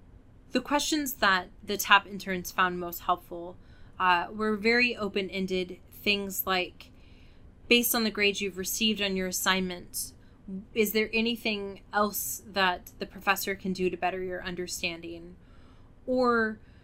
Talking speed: 135 wpm